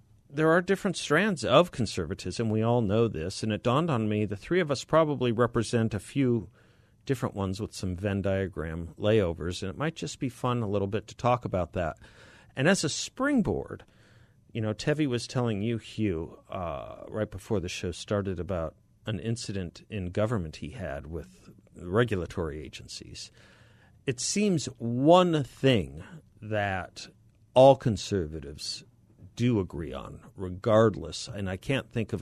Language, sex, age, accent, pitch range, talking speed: English, male, 50-69, American, 95-120 Hz, 160 wpm